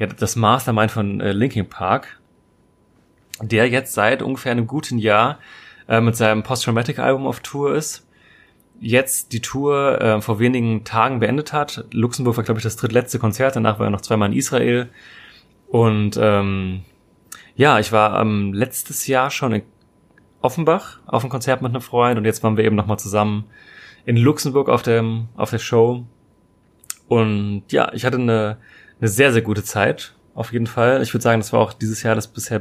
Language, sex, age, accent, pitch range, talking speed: German, male, 30-49, German, 105-120 Hz, 175 wpm